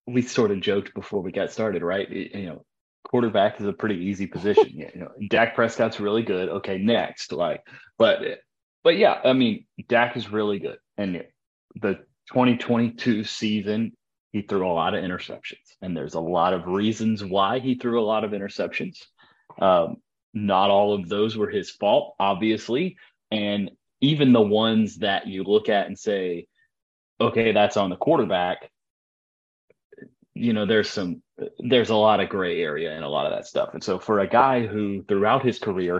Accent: American